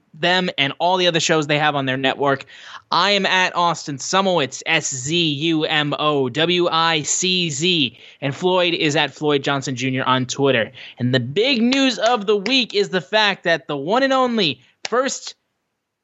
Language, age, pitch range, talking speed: English, 20-39, 130-180 Hz, 185 wpm